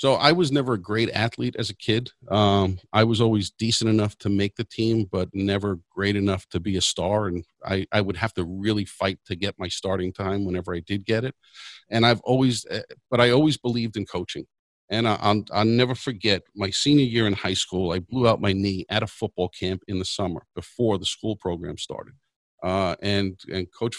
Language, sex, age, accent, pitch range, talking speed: English, male, 50-69, American, 95-115 Hz, 220 wpm